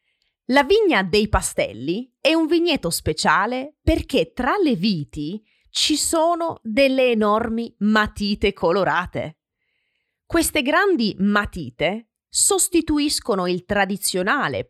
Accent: native